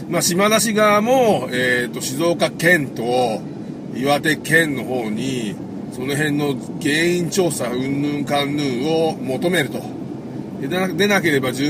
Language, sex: Japanese, male